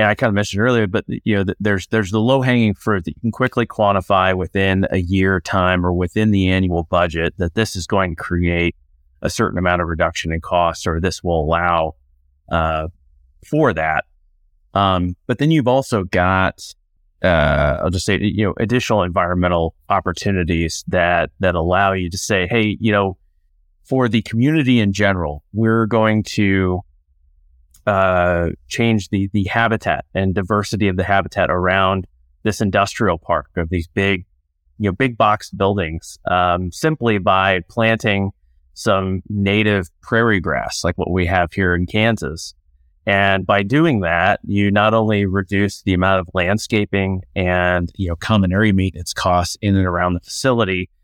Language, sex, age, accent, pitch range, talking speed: English, male, 30-49, American, 85-105 Hz, 165 wpm